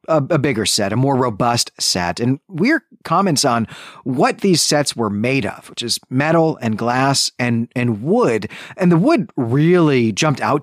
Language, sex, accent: English, male, American